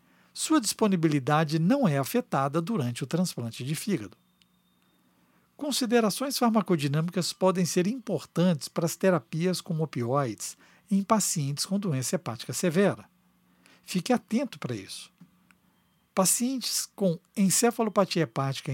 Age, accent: 60-79, Brazilian